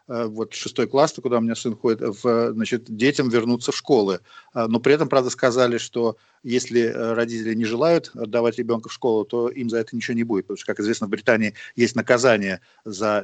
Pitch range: 115-135 Hz